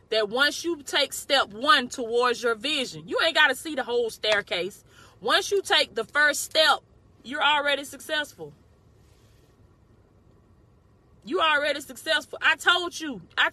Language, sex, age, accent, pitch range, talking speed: English, female, 20-39, American, 215-295 Hz, 145 wpm